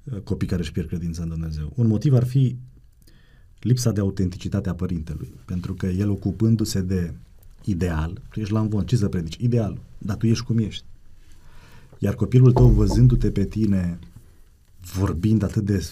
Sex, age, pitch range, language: male, 30-49, 90-110 Hz, Romanian